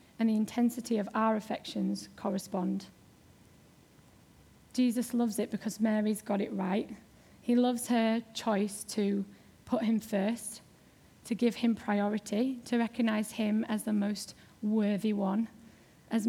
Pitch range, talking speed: 205-235 Hz, 135 wpm